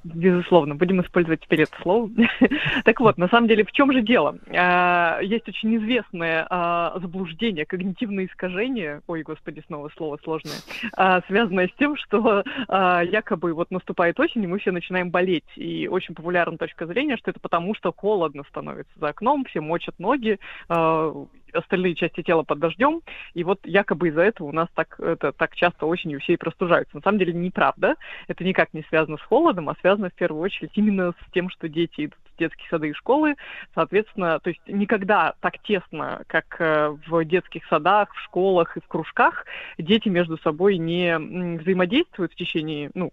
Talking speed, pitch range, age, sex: 175 wpm, 165-200 Hz, 20-39, female